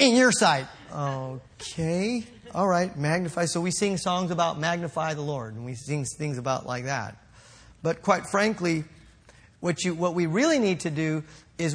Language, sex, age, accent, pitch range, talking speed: English, male, 40-59, American, 145-205 Hz, 175 wpm